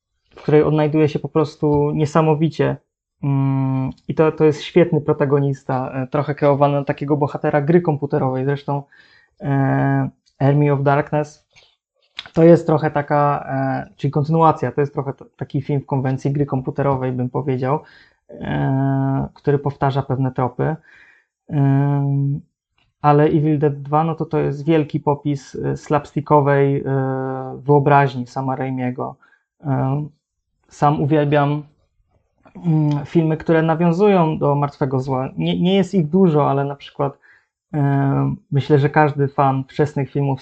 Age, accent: 20-39, native